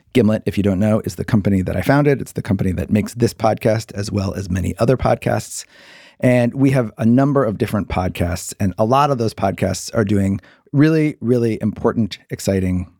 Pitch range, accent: 95-125 Hz, American